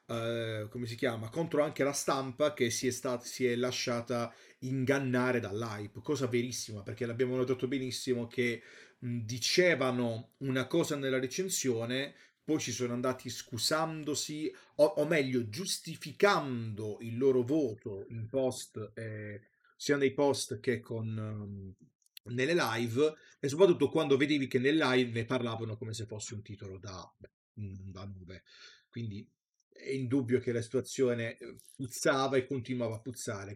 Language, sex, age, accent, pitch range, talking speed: Italian, male, 30-49, native, 115-130 Hz, 135 wpm